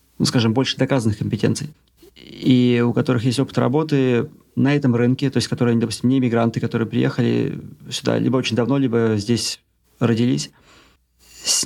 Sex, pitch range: male, 115-140 Hz